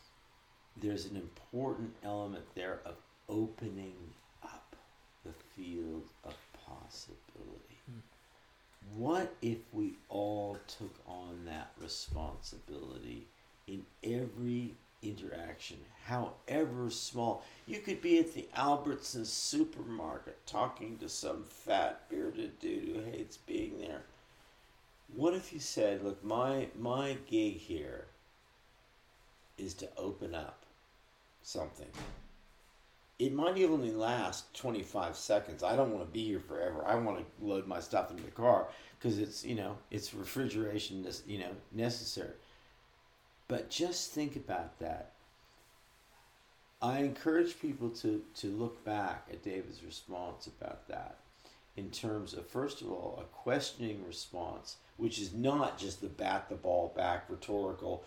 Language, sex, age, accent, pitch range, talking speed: English, male, 50-69, American, 100-145 Hz, 125 wpm